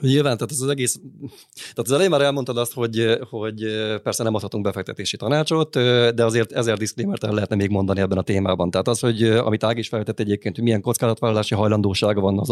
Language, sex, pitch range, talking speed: Hungarian, male, 100-120 Hz, 195 wpm